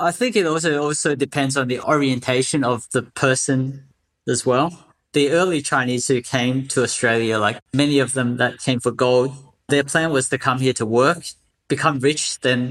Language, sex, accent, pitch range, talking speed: English, male, Australian, 125-145 Hz, 190 wpm